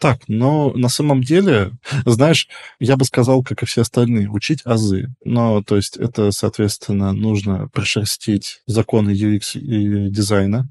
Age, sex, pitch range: 20-39, male, 105-125 Hz